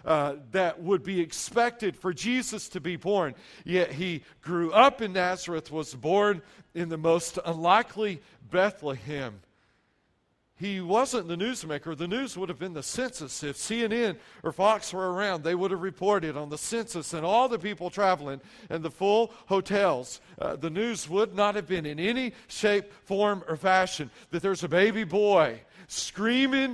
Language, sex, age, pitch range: English, male, 50-69, 150-205 Hz